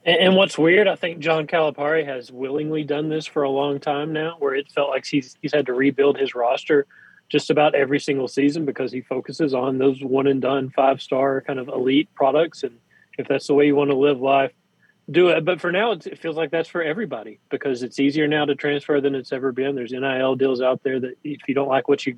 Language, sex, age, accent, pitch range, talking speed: English, male, 30-49, American, 130-145 Hz, 240 wpm